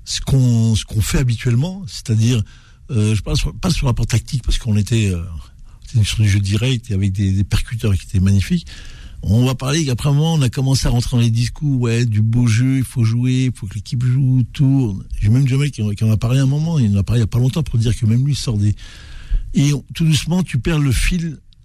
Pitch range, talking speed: 105-135 Hz, 245 wpm